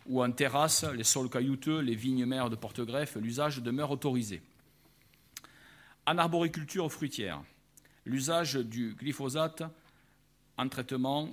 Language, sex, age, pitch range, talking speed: French, male, 50-69, 120-145 Hz, 115 wpm